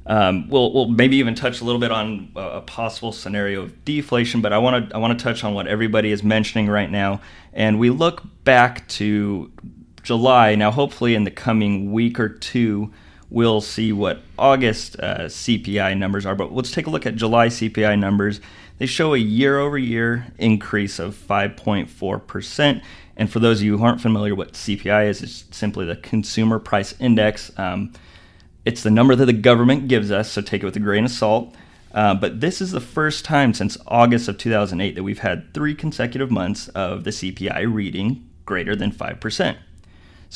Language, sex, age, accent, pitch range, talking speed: English, male, 30-49, American, 100-120 Hz, 190 wpm